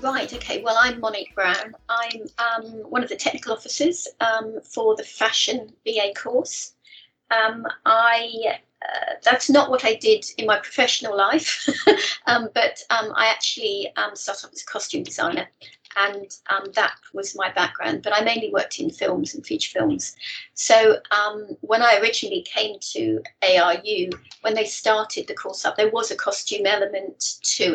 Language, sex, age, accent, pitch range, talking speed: English, female, 40-59, British, 210-330 Hz, 170 wpm